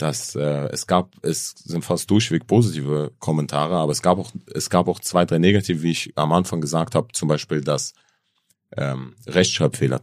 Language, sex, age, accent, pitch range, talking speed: German, male, 40-59, German, 80-100 Hz, 185 wpm